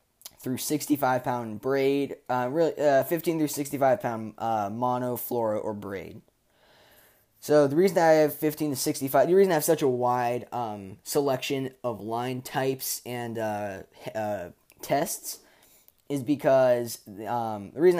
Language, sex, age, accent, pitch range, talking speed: English, male, 10-29, American, 115-140 Hz, 150 wpm